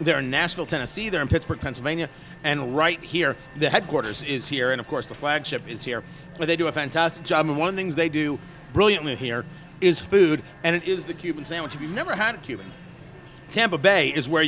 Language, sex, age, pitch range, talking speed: English, male, 40-59, 155-190 Hz, 225 wpm